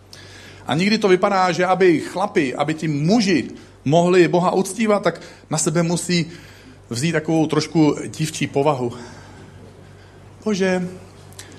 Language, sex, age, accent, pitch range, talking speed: Czech, male, 40-59, native, 100-150 Hz, 120 wpm